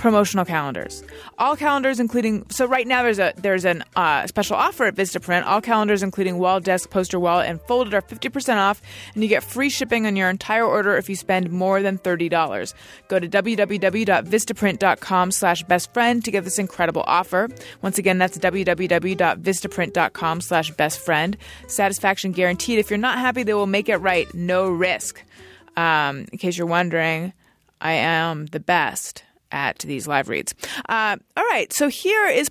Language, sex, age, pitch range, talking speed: English, female, 20-39, 185-245 Hz, 165 wpm